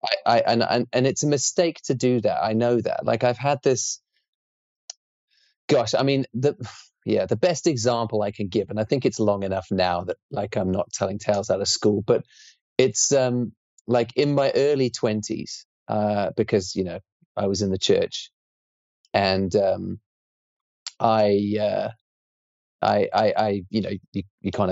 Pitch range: 105-135 Hz